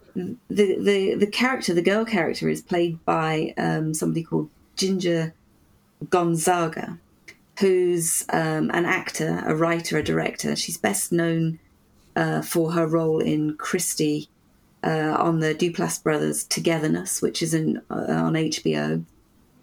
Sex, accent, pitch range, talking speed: female, British, 155-185 Hz, 140 wpm